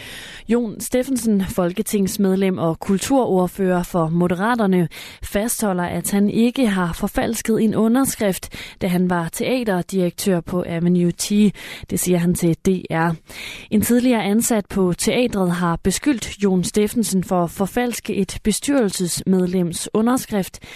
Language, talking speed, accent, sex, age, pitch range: Danish, 120 wpm, native, female, 20-39, 175-215 Hz